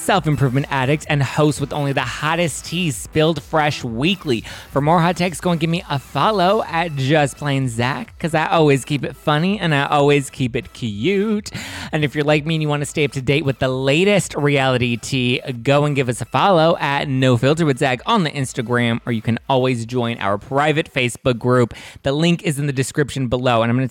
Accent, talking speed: American, 220 wpm